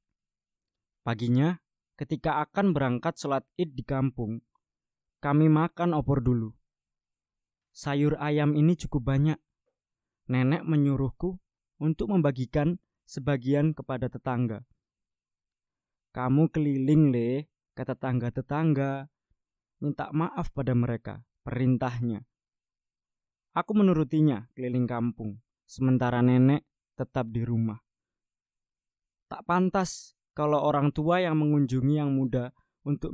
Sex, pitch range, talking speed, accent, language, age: male, 125-150 Hz, 100 wpm, native, Indonesian, 20-39